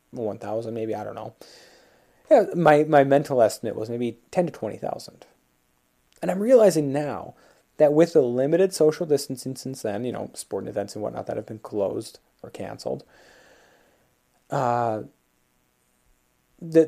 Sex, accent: male, American